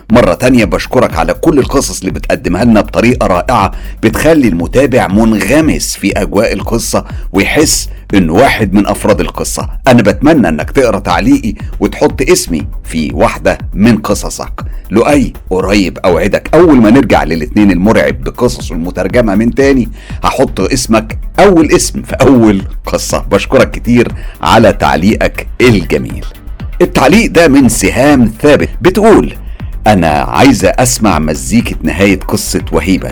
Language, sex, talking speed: Arabic, male, 130 wpm